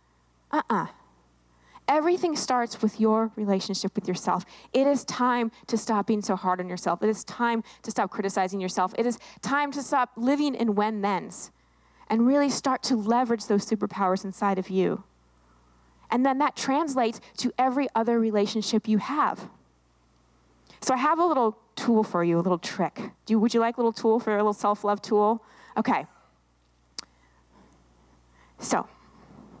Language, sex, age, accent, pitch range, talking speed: English, female, 20-39, American, 175-245 Hz, 170 wpm